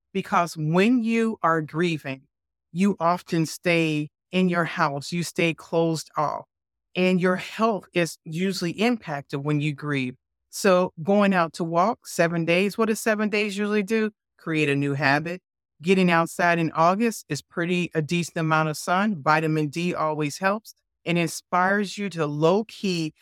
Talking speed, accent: 160 wpm, American